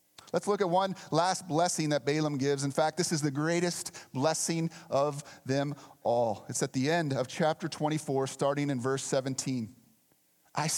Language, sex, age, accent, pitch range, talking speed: English, male, 30-49, American, 140-185 Hz, 175 wpm